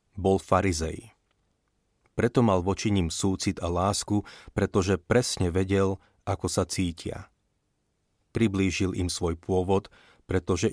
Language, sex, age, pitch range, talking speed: Slovak, male, 30-49, 90-105 Hz, 110 wpm